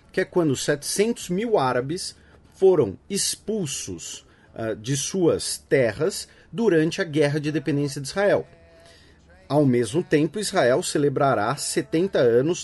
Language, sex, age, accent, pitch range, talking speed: Portuguese, male, 40-59, Brazilian, 125-175 Hz, 120 wpm